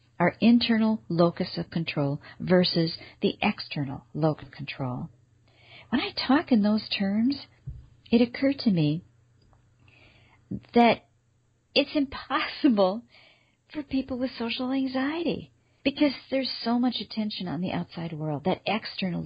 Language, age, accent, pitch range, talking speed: English, 50-69, American, 140-215 Hz, 125 wpm